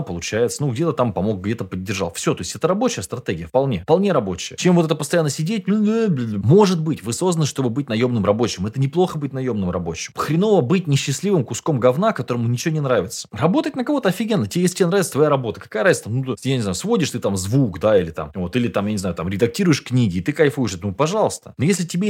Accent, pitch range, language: native, 105-170 Hz, Russian